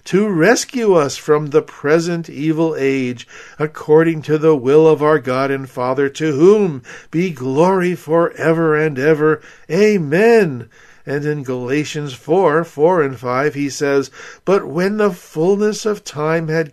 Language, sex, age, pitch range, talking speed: English, male, 50-69, 130-165 Hz, 150 wpm